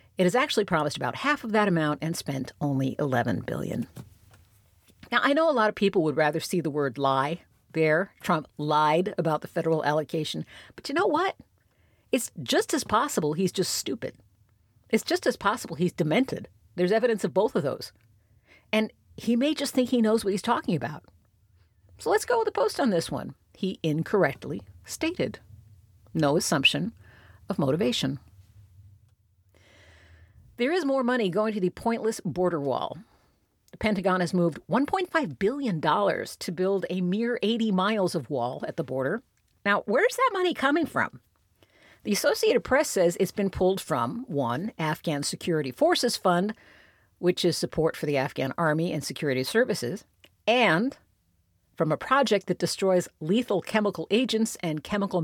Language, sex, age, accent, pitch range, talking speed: English, female, 50-69, American, 140-220 Hz, 165 wpm